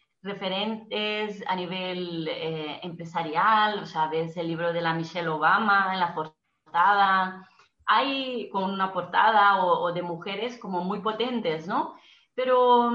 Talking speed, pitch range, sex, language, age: 140 wpm, 180-225 Hz, female, Spanish, 30-49